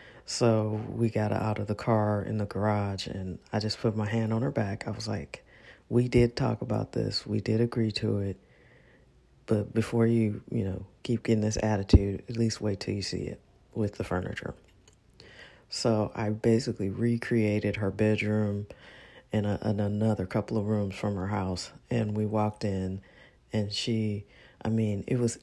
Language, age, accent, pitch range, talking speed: English, 40-59, American, 100-115 Hz, 180 wpm